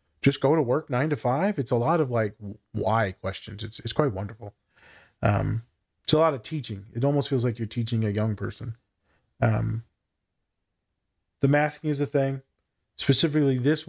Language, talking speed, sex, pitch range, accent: English, 175 wpm, male, 110-130 Hz, American